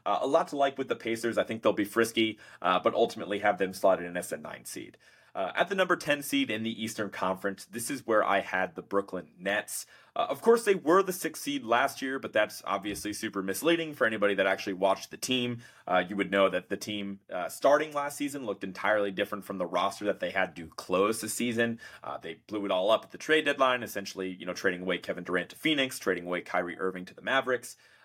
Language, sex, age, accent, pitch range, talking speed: English, male, 30-49, American, 100-130 Hz, 240 wpm